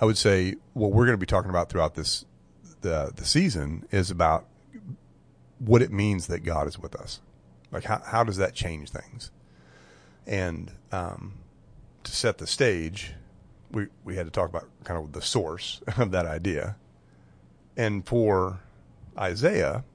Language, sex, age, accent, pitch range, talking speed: English, male, 40-59, American, 75-100 Hz, 160 wpm